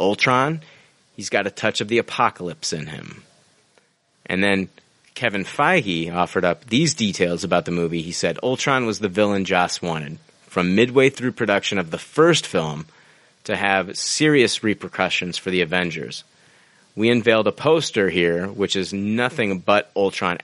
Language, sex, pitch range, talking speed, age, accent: English, male, 90-110 Hz, 160 wpm, 30-49, American